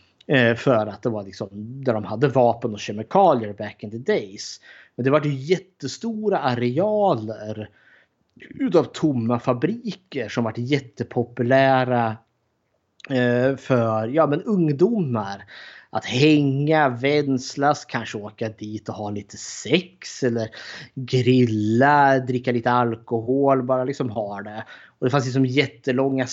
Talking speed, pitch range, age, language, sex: 125 wpm, 115-140 Hz, 30-49, Swedish, male